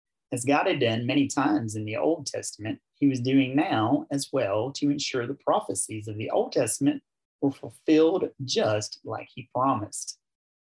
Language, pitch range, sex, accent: English, 105-140 Hz, male, American